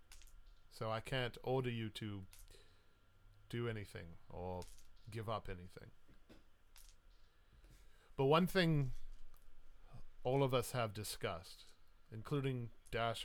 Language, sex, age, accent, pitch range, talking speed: English, male, 40-59, American, 80-120 Hz, 100 wpm